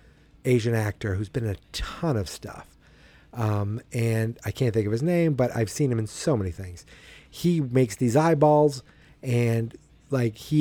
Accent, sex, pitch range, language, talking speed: American, male, 110-145 Hz, English, 180 wpm